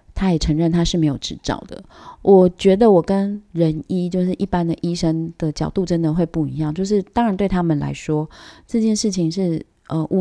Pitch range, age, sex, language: 155-190 Hz, 20-39, female, Chinese